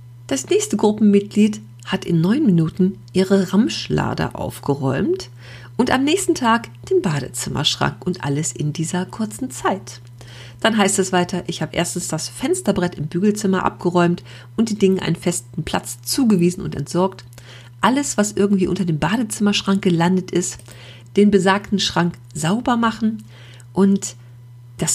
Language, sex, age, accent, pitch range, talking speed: German, female, 40-59, German, 145-210 Hz, 140 wpm